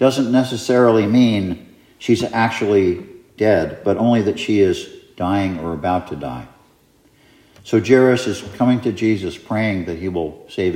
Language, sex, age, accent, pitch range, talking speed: English, male, 60-79, American, 105-130 Hz, 150 wpm